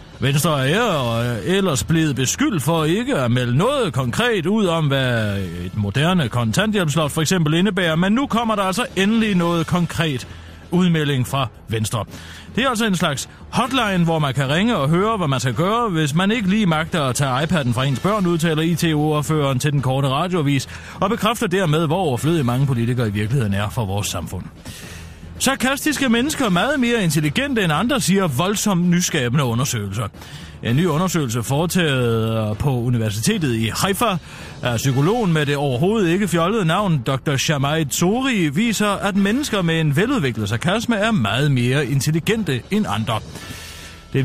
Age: 30-49